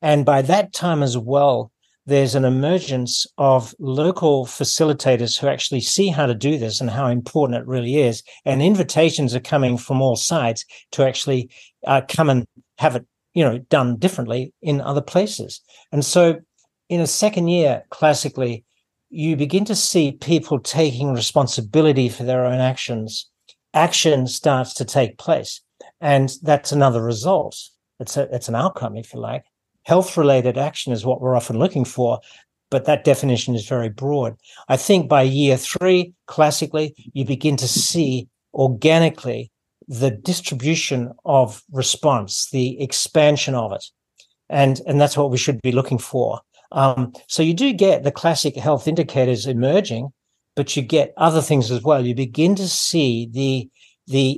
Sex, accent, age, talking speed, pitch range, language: male, Australian, 60-79, 160 wpm, 125-155 Hz, English